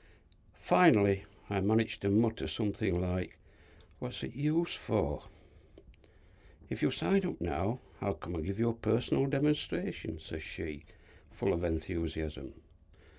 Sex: male